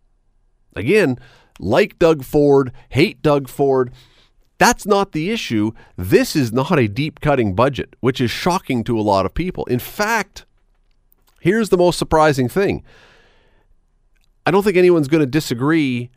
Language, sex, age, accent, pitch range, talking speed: English, male, 40-59, American, 110-150 Hz, 145 wpm